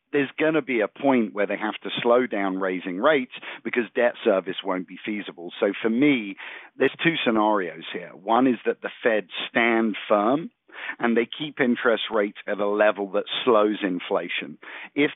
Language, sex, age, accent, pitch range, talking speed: English, male, 50-69, British, 100-125 Hz, 180 wpm